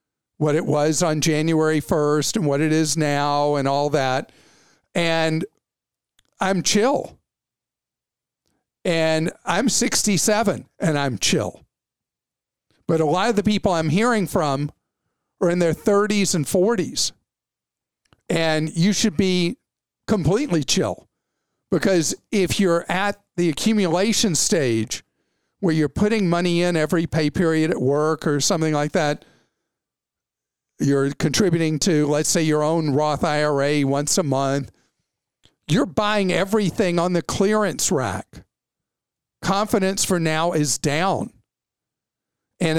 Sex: male